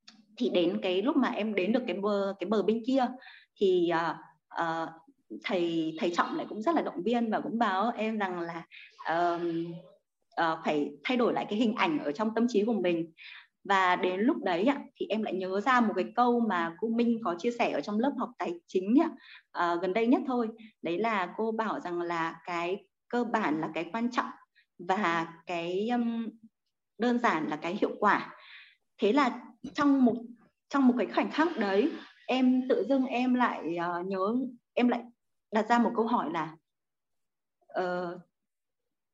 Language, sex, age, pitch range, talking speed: Vietnamese, female, 20-39, 185-245 Hz, 190 wpm